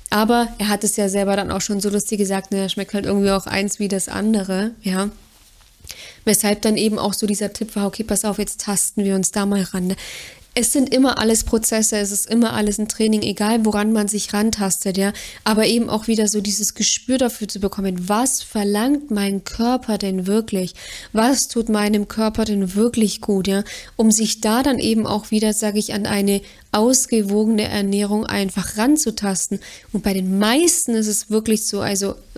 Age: 20-39